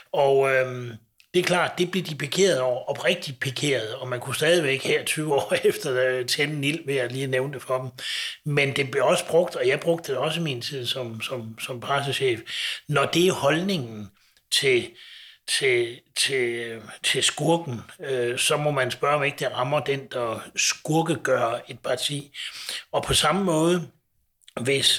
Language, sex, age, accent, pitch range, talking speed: Danish, male, 60-79, native, 125-160 Hz, 180 wpm